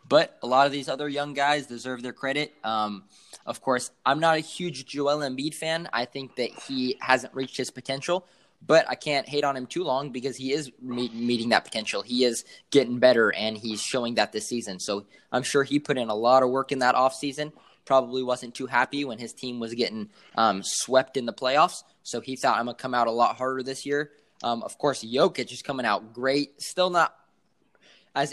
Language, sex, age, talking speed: English, male, 20-39, 220 wpm